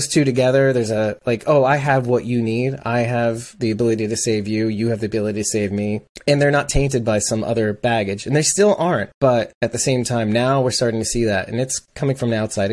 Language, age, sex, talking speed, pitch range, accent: English, 30-49, male, 260 wpm, 110-135 Hz, American